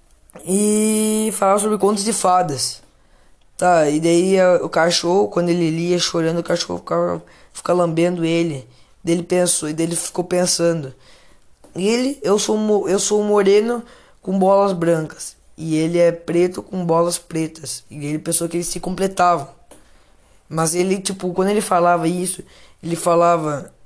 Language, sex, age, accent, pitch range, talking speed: Croatian, female, 20-39, Brazilian, 165-195 Hz, 150 wpm